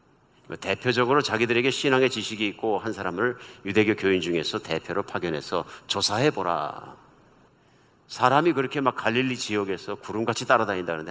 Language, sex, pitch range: Korean, male, 105-150 Hz